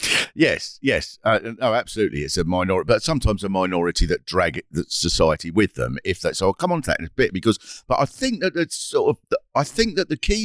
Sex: male